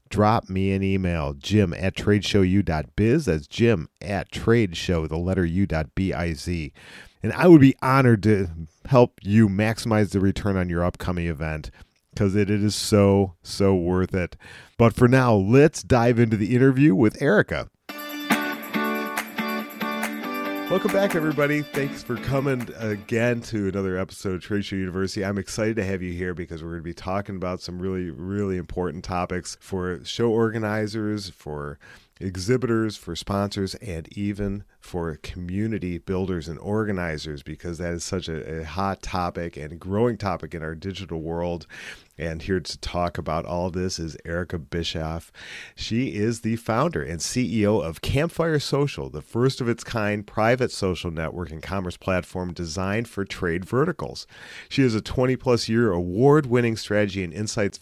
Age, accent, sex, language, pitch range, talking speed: 40-59, American, male, English, 85-110 Hz, 155 wpm